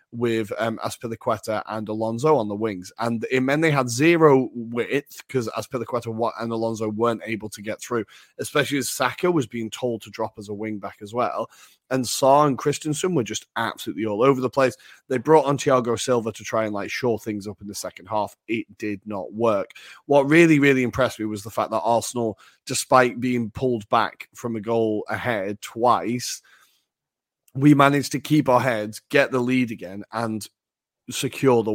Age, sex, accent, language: 30-49, male, British, English